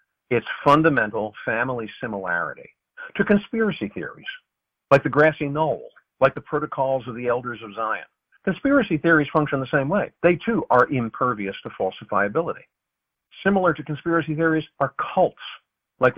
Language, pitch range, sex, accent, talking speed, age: English, 120-180 Hz, male, American, 140 wpm, 50-69